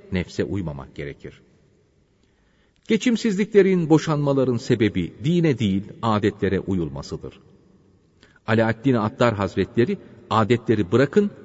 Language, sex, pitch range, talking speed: Turkish, male, 100-150 Hz, 80 wpm